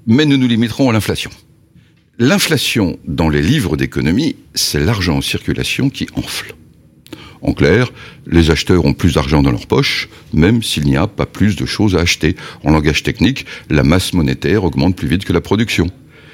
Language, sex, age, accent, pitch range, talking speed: French, male, 60-79, French, 85-135 Hz, 180 wpm